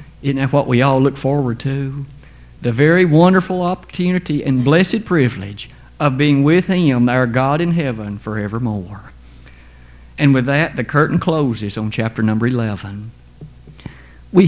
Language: English